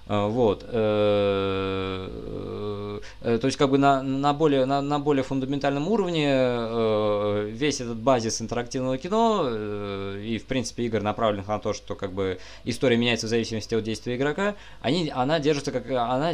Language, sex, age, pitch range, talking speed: Russian, male, 20-39, 105-140 Hz, 145 wpm